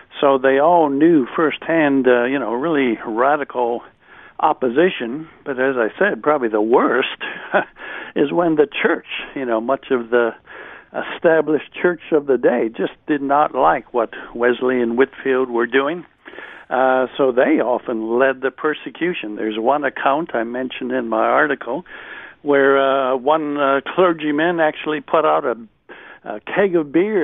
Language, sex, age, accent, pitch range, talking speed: English, male, 60-79, American, 125-155 Hz, 155 wpm